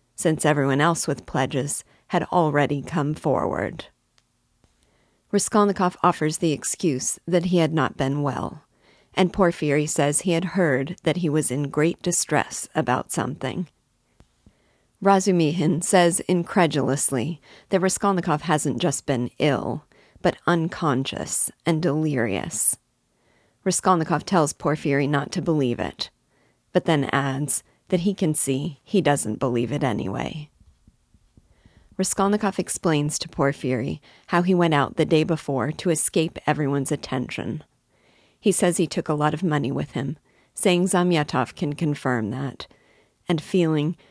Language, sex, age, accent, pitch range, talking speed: English, female, 40-59, American, 140-175 Hz, 130 wpm